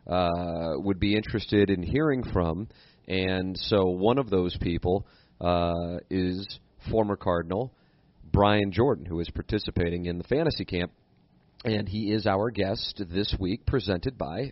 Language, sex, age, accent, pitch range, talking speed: English, male, 40-59, American, 90-105 Hz, 145 wpm